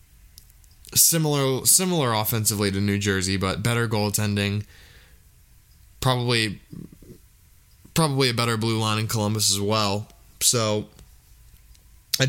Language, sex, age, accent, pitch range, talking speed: English, male, 20-39, American, 100-120 Hz, 105 wpm